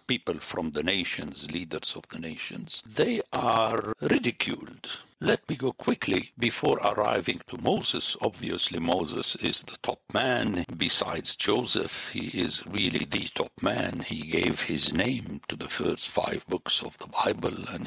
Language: English